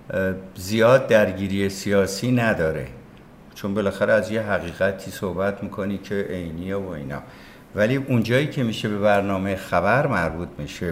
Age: 60-79